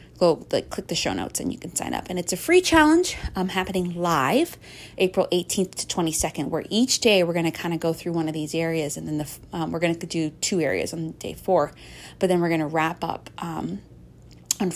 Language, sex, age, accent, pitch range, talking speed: English, female, 30-49, American, 160-200 Hz, 240 wpm